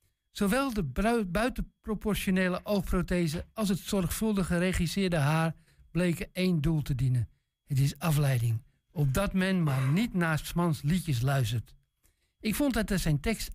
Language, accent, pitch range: Dutch, Dutch, 150-195 Hz